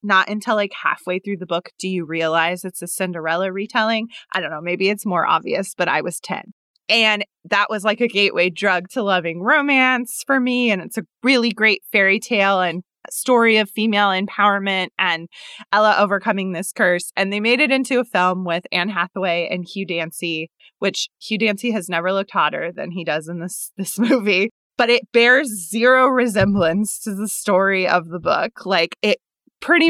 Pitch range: 180-220 Hz